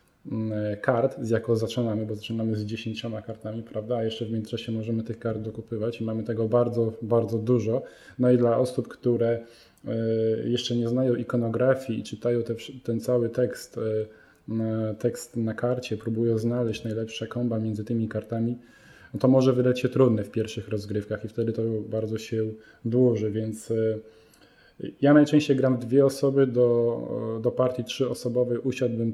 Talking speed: 150 wpm